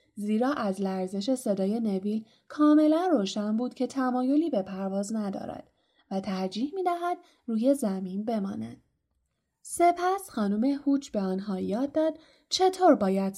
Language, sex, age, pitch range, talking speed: Persian, female, 10-29, 195-280 Hz, 130 wpm